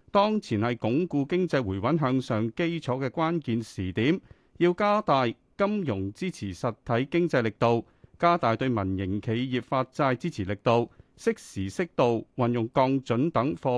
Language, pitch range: Chinese, 110-170 Hz